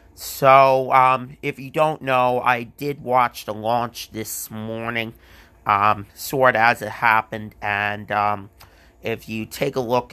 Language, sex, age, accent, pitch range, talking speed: English, male, 30-49, American, 105-130 Hz, 150 wpm